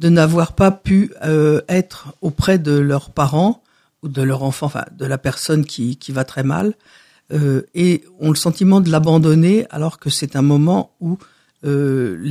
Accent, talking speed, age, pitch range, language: French, 180 wpm, 50-69, 145-185 Hz, French